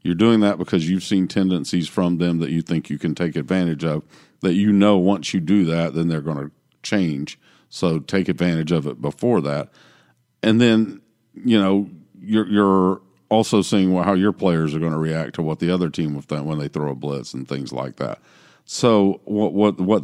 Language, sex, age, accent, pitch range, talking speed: English, male, 50-69, American, 80-100 Hz, 215 wpm